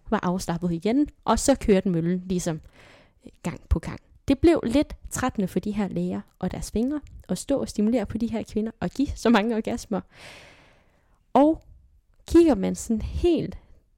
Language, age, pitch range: Danish, 10-29, 185-265 Hz